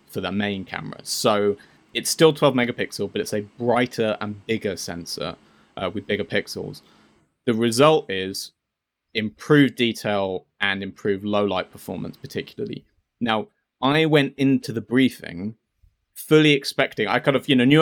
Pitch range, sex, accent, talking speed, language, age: 105-135 Hz, male, British, 150 wpm, English, 30-49